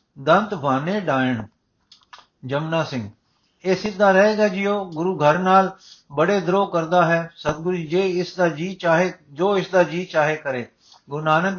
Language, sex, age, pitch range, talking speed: Punjabi, male, 60-79, 155-190 Hz, 155 wpm